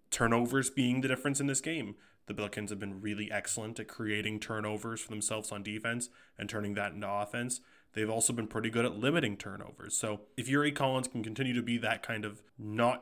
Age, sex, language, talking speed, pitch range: 20-39, male, English, 205 wpm, 105-120 Hz